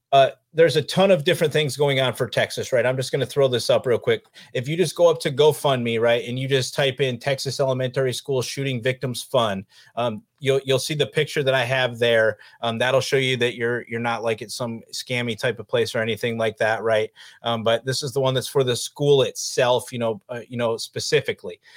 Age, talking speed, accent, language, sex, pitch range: 30-49, 240 wpm, American, English, male, 115-135 Hz